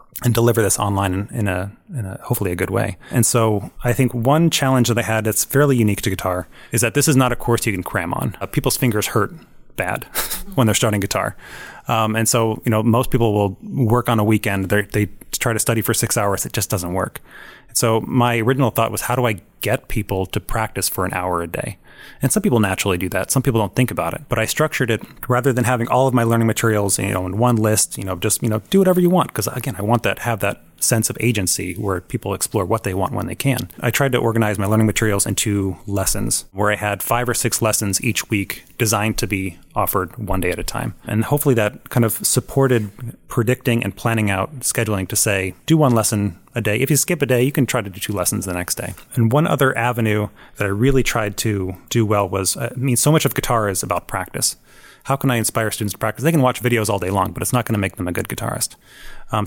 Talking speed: 250 wpm